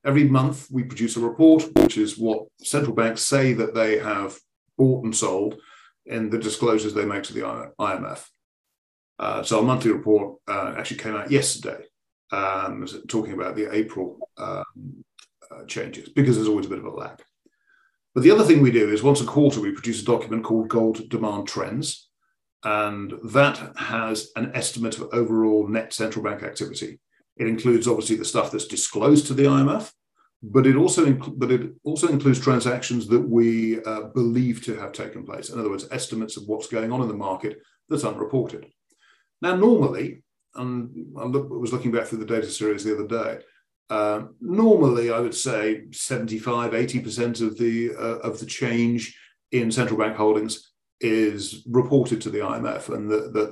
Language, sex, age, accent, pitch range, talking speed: English, male, 40-59, British, 110-125 Hz, 180 wpm